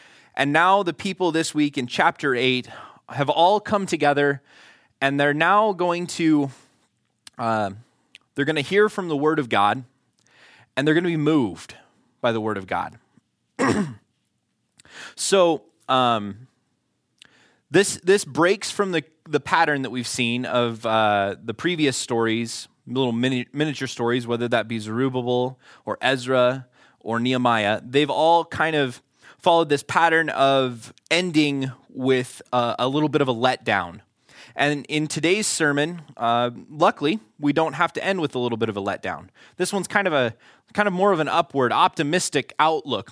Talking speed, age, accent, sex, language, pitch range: 160 wpm, 20-39, American, male, English, 125-165 Hz